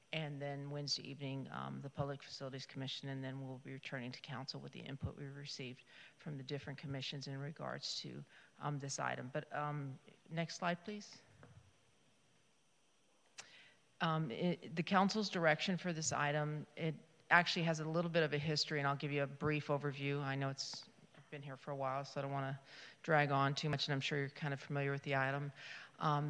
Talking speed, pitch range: 200 wpm, 140-155 Hz